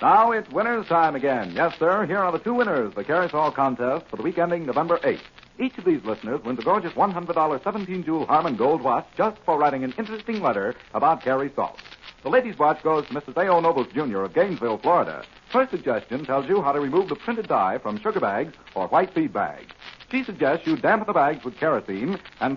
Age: 60-79